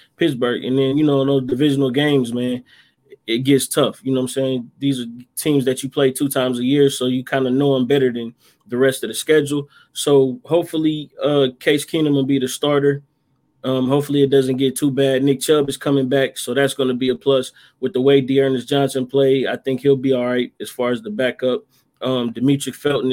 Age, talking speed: 20-39, 230 wpm